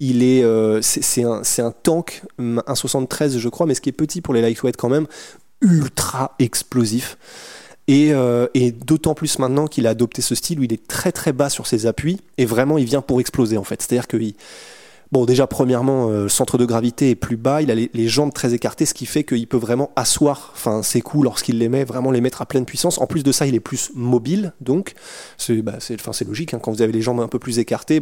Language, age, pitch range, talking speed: French, 20-39, 115-145 Hz, 255 wpm